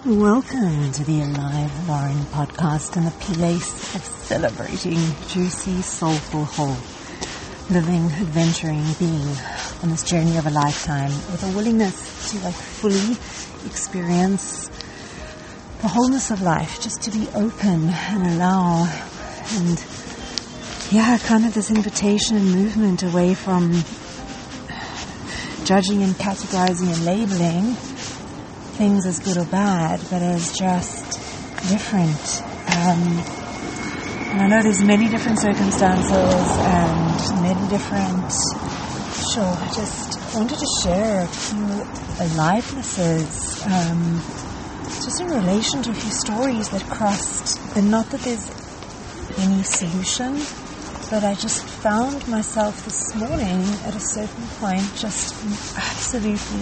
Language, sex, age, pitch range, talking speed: English, female, 40-59, 170-215 Hz, 120 wpm